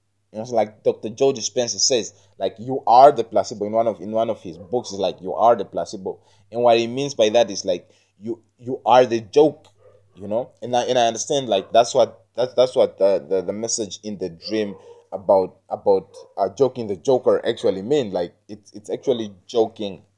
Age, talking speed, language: 20-39, 220 wpm, English